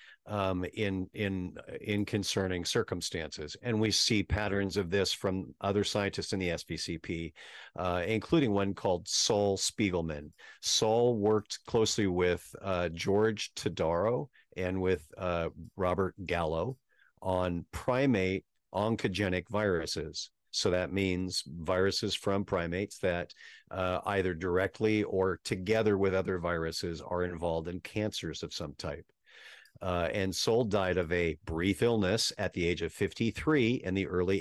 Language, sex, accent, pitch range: English, male, American, 90-105 Hz